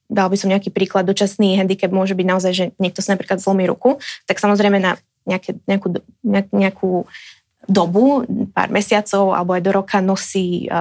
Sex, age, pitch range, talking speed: female, 20-39, 190-210 Hz, 170 wpm